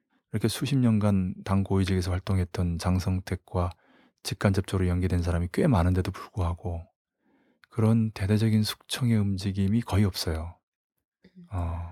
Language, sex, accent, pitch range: Korean, male, native, 95-115 Hz